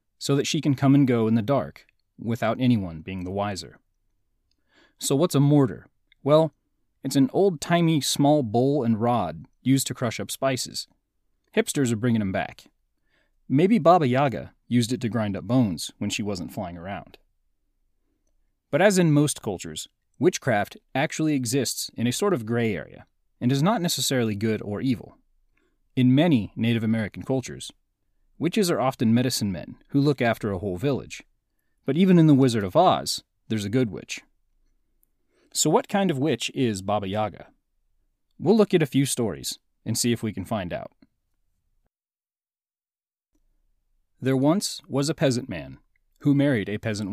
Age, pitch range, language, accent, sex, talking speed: 30-49, 110-145 Hz, English, American, male, 165 wpm